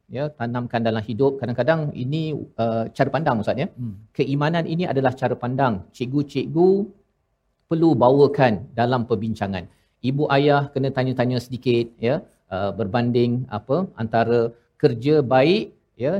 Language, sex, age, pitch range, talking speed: Malayalam, male, 50-69, 120-150 Hz, 125 wpm